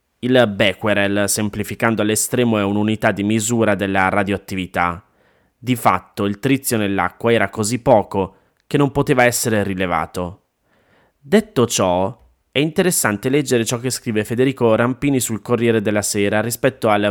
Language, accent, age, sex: Italian, native, 20-39, male